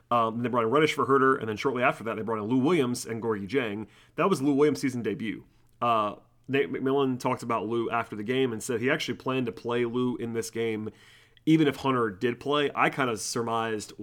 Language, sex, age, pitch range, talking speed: English, male, 30-49, 110-125 Hz, 235 wpm